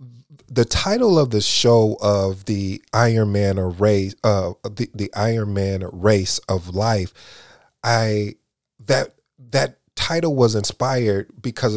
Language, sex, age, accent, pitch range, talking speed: English, male, 30-49, American, 100-120 Hz, 130 wpm